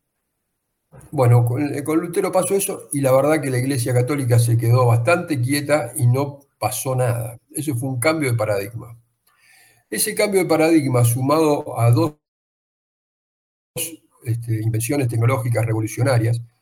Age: 50-69